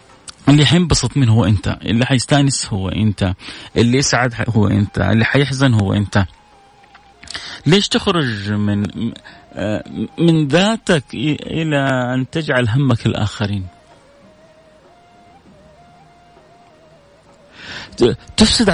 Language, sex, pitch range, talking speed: Arabic, male, 115-160 Hz, 90 wpm